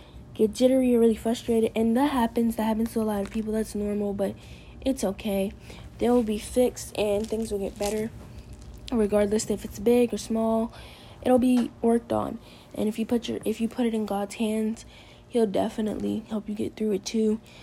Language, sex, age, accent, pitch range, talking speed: English, female, 10-29, American, 205-230 Hz, 200 wpm